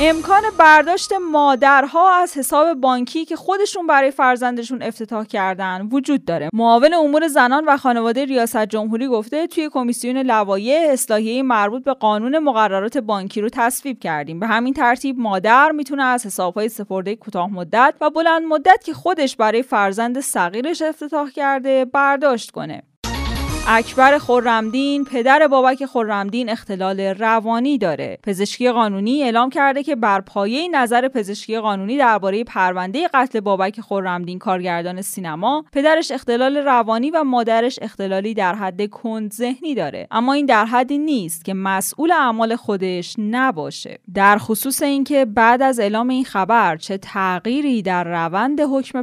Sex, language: female, Persian